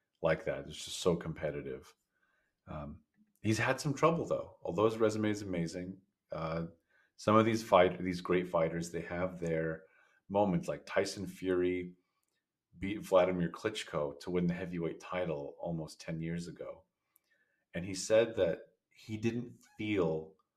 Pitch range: 85-115 Hz